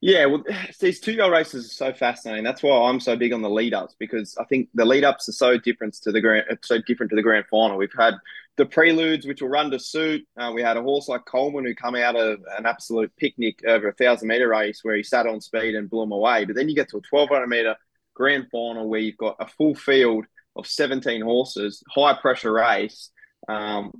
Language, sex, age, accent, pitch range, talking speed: English, male, 20-39, Australian, 110-130 Hz, 225 wpm